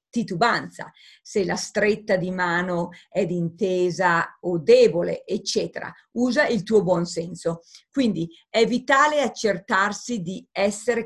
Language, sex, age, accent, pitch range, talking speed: Italian, female, 40-59, native, 175-225 Hz, 120 wpm